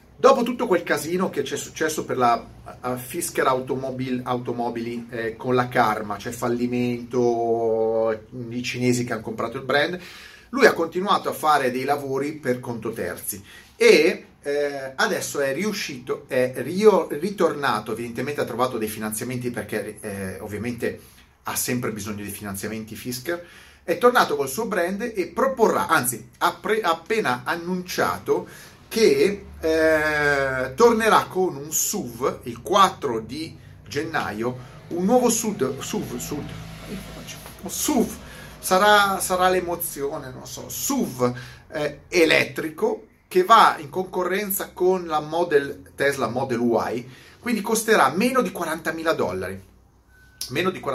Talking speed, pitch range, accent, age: 130 wpm, 120-190 Hz, native, 30-49